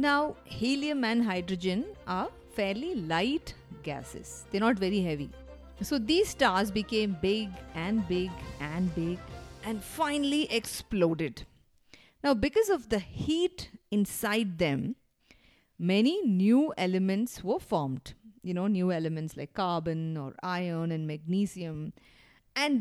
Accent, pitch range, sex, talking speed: Indian, 180-245 Hz, female, 125 wpm